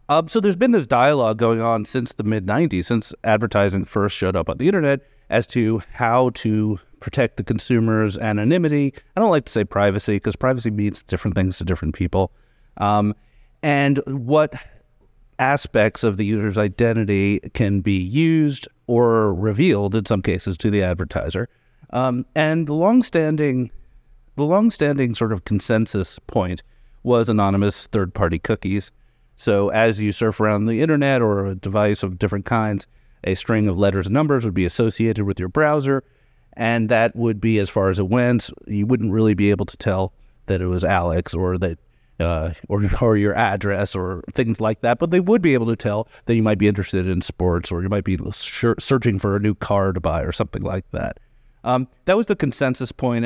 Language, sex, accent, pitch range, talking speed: English, male, American, 100-125 Hz, 190 wpm